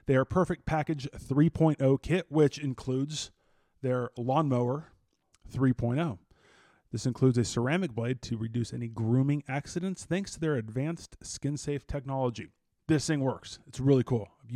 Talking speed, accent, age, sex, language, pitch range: 140 wpm, American, 20-39, male, English, 120-145 Hz